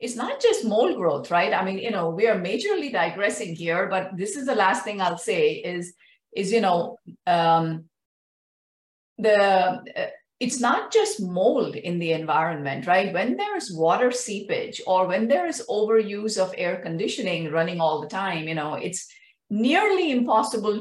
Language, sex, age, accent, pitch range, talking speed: English, female, 50-69, Indian, 175-245 Hz, 175 wpm